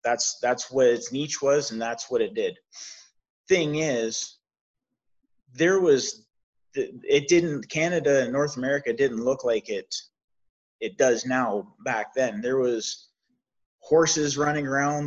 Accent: American